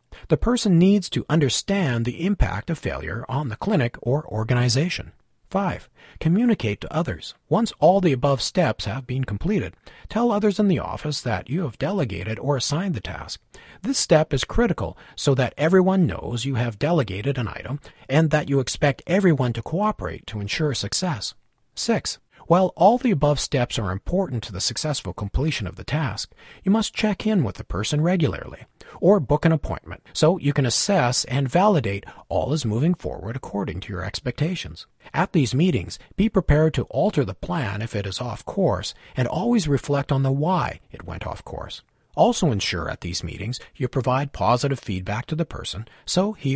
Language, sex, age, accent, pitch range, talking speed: English, male, 40-59, American, 110-170 Hz, 180 wpm